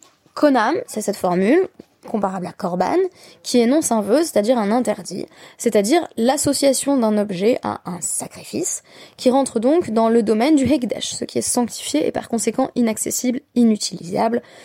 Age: 20-39